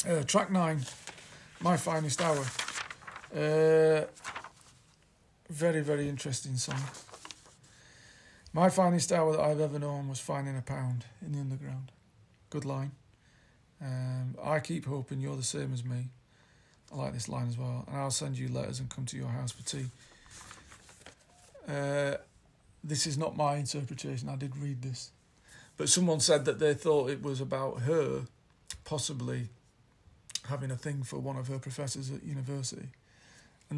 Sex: male